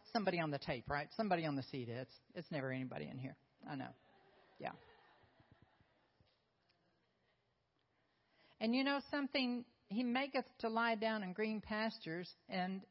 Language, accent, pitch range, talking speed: English, American, 160-240 Hz, 145 wpm